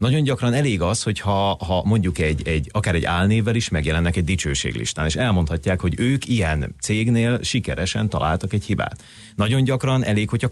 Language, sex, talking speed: Hungarian, male, 170 wpm